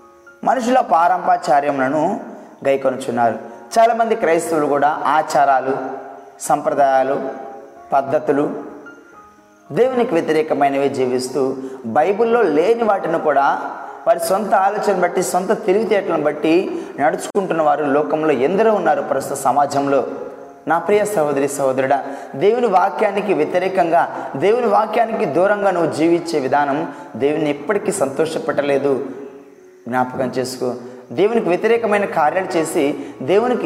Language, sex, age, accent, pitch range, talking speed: Telugu, male, 20-39, native, 140-220 Hz, 95 wpm